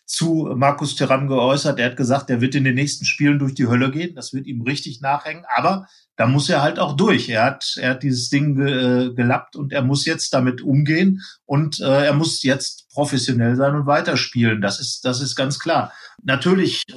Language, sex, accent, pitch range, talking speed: German, male, German, 125-145 Hz, 210 wpm